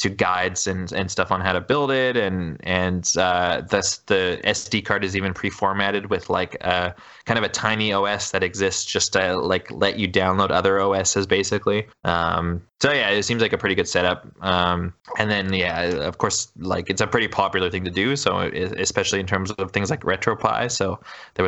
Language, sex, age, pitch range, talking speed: English, male, 20-39, 95-110 Hz, 205 wpm